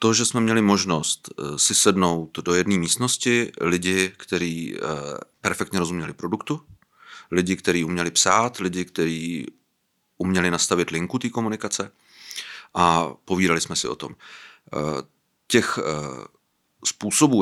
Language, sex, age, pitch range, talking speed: Czech, male, 40-59, 85-100 Hz, 115 wpm